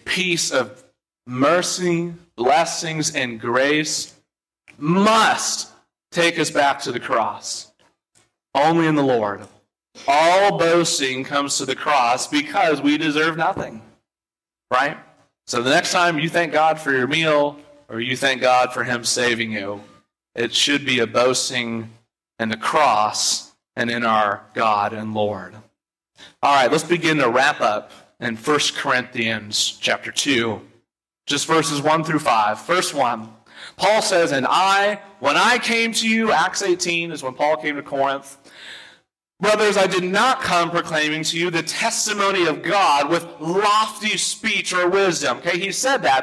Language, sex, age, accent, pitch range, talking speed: English, male, 40-59, American, 125-175 Hz, 150 wpm